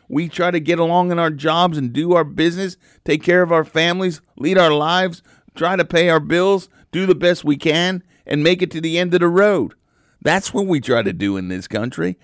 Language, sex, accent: English, male, American